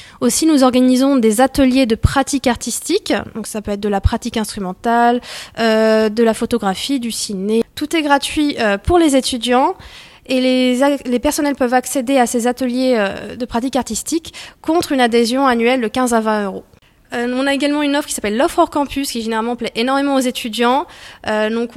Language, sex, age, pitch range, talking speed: French, female, 20-39, 225-270 Hz, 195 wpm